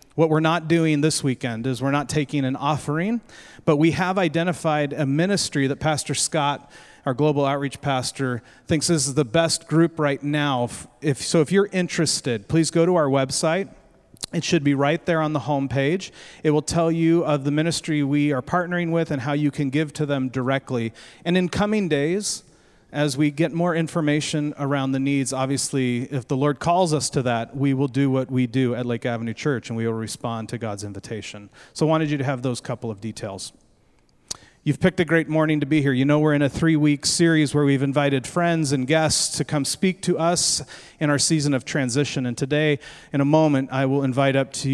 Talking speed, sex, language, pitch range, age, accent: 215 wpm, male, English, 135-160 Hz, 40-59, American